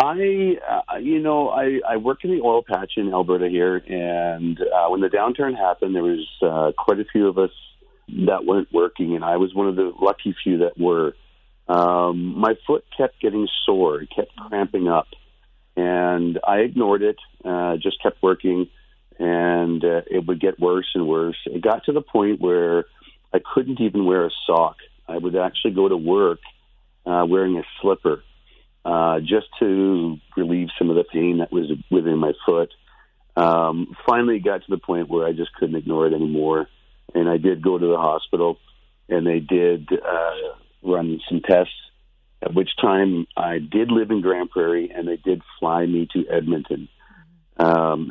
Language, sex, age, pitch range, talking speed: English, male, 40-59, 85-100 Hz, 185 wpm